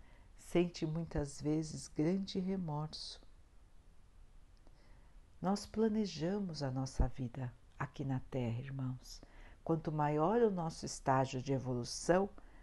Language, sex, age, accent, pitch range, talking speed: Portuguese, female, 60-79, Brazilian, 130-200 Hz, 100 wpm